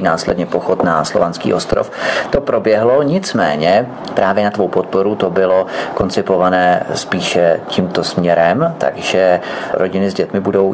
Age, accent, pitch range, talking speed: 30-49, native, 100-120 Hz, 130 wpm